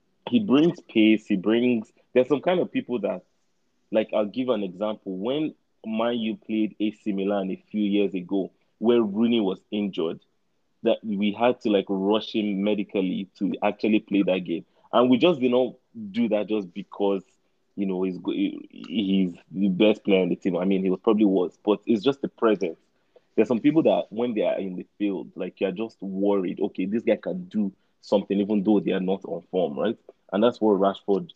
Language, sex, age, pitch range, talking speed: English, male, 30-49, 95-115 Hz, 205 wpm